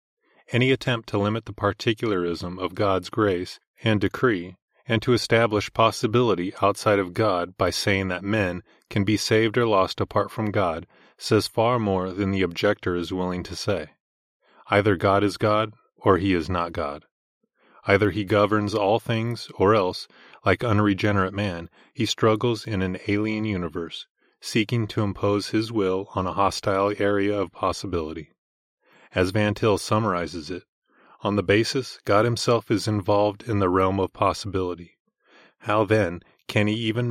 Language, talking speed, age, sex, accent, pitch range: English, 160 wpm, 30-49, male, American, 95-110 Hz